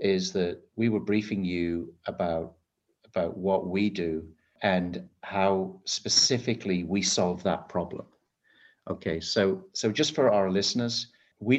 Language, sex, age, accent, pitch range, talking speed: English, male, 50-69, British, 90-105 Hz, 135 wpm